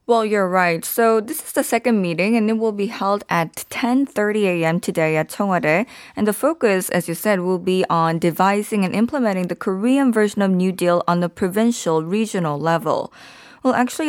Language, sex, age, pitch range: Korean, female, 20-39, 175-230 Hz